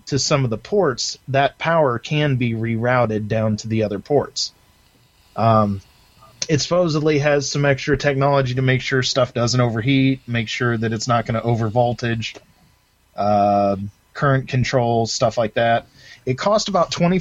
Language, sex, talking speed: English, male, 165 wpm